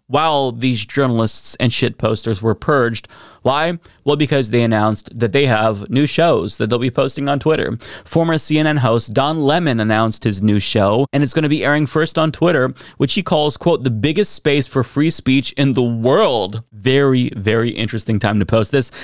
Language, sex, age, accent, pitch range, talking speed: English, male, 20-39, American, 110-140 Hz, 195 wpm